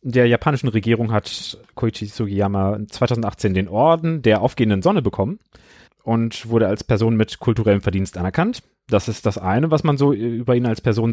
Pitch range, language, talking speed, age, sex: 95-120 Hz, German, 175 wpm, 30-49, male